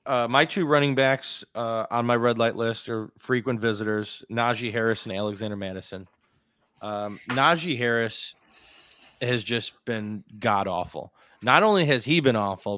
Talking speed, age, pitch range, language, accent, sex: 150 wpm, 20-39, 110-130 Hz, English, American, male